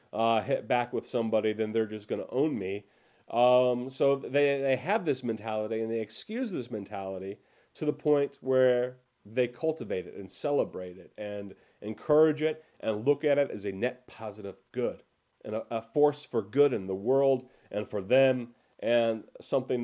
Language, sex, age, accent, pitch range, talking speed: English, male, 40-59, American, 110-150 Hz, 180 wpm